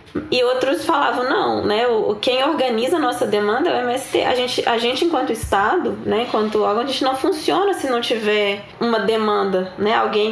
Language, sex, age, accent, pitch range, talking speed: Portuguese, female, 10-29, Brazilian, 210-265 Hz, 190 wpm